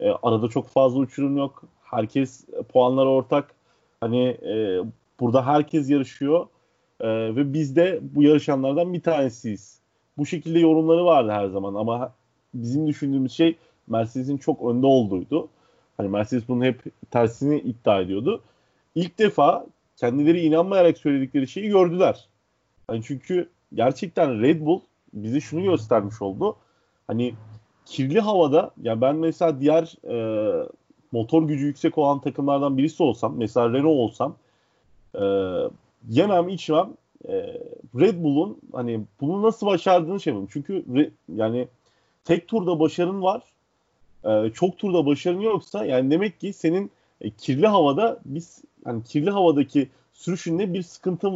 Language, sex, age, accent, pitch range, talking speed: Turkish, male, 30-49, native, 120-170 Hz, 135 wpm